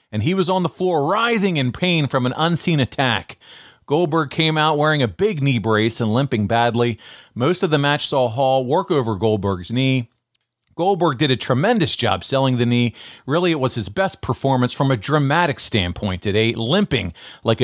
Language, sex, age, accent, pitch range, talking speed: English, male, 40-59, American, 115-155 Hz, 190 wpm